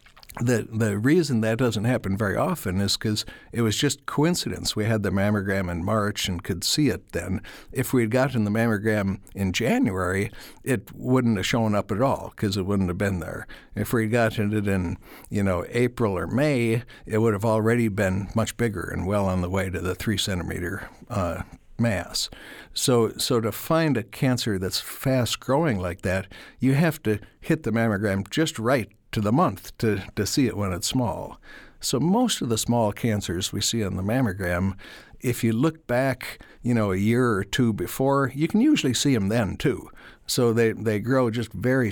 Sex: male